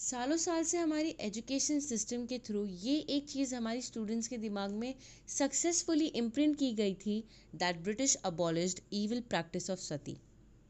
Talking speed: 155 wpm